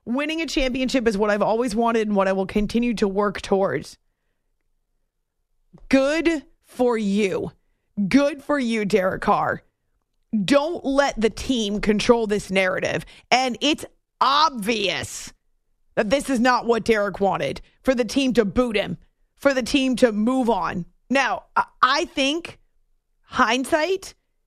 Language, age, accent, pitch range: English, 30-49, American, 220-270 Hz